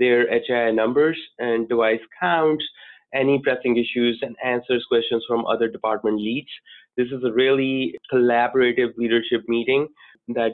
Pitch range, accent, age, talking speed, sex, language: 115-140 Hz, Indian, 20-39, 135 wpm, male, English